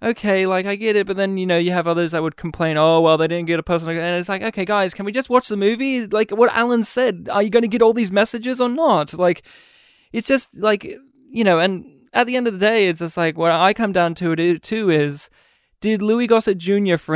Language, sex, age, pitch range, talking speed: English, male, 20-39, 170-220 Hz, 260 wpm